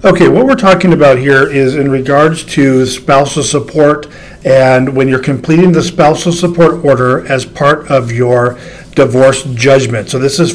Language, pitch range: English, 130-160 Hz